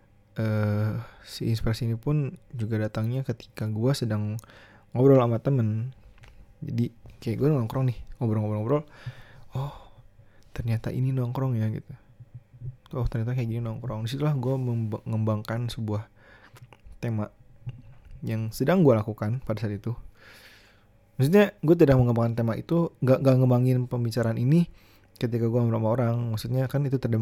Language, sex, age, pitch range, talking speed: Indonesian, male, 20-39, 110-130 Hz, 135 wpm